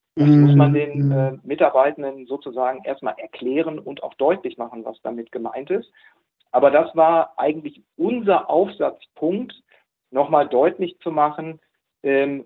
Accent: German